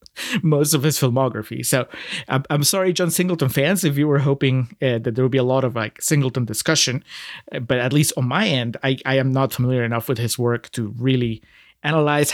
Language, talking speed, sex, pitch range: English, 210 wpm, male, 125-155 Hz